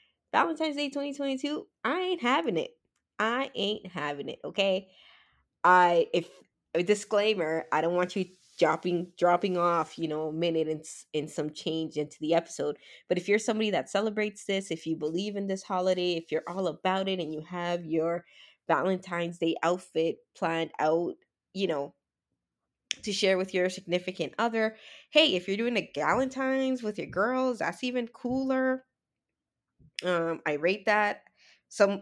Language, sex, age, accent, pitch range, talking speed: English, female, 20-39, American, 165-235 Hz, 160 wpm